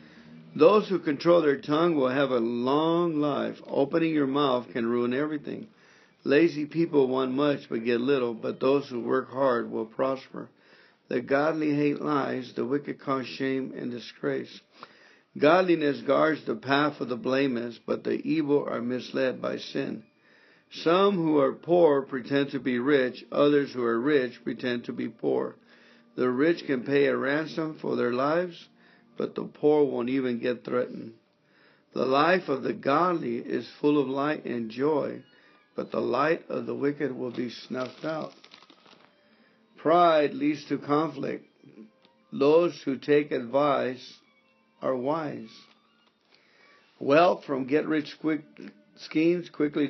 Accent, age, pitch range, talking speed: American, 60-79, 125-155 Hz, 145 wpm